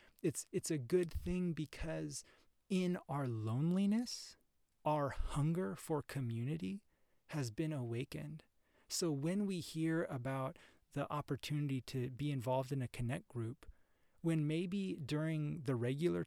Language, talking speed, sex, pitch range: English, 130 wpm, male, 130-160 Hz